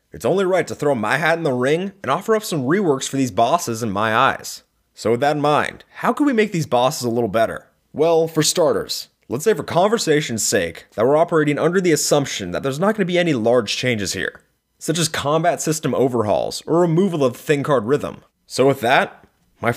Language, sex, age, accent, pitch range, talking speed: English, male, 20-39, American, 125-165 Hz, 230 wpm